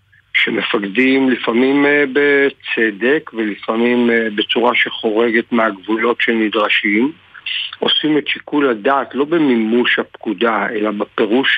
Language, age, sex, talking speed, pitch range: Hebrew, 50-69, male, 90 wpm, 110-130 Hz